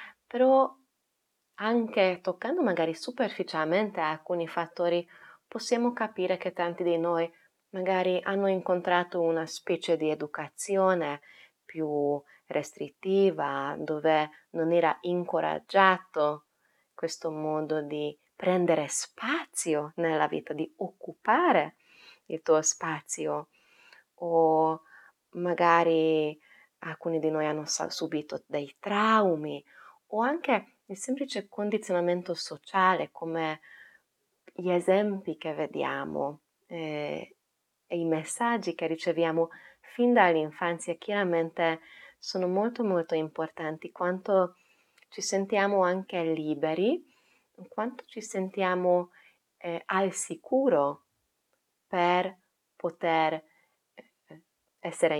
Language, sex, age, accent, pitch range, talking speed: Italian, female, 20-39, native, 155-190 Hz, 90 wpm